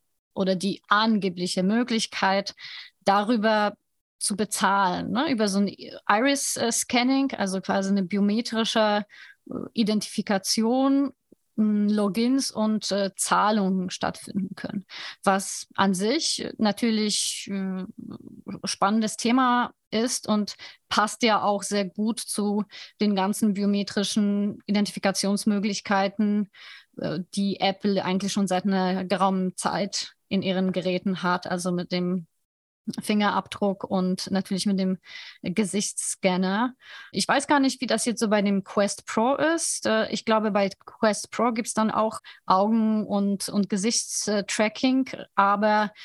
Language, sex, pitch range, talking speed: German, female, 195-225 Hz, 120 wpm